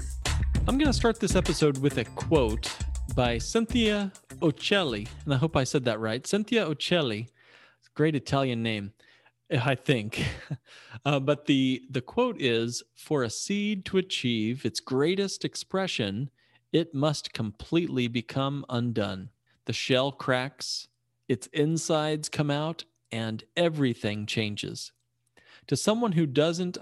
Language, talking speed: English, 130 wpm